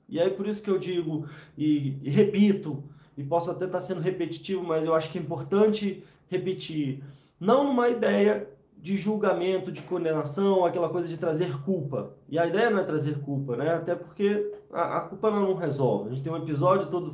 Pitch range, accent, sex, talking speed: 155-200 Hz, Brazilian, male, 195 wpm